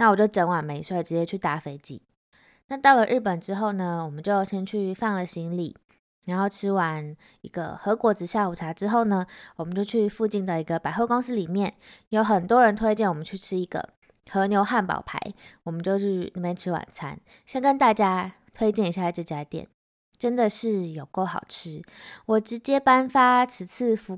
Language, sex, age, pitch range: Chinese, female, 20-39, 170-220 Hz